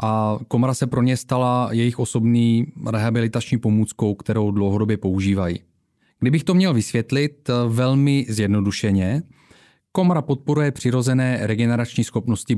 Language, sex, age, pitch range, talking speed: Czech, male, 30-49, 110-145 Hz, 115 wpm